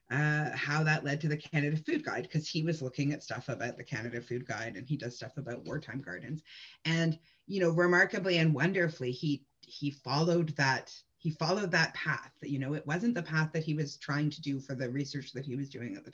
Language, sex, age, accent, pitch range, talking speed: English, female, 30-49, American, 140-170 Hz, 230 wpm